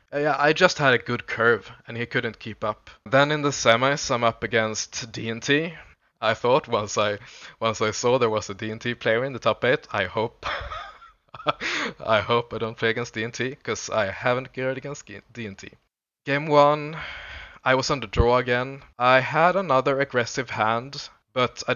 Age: 20-39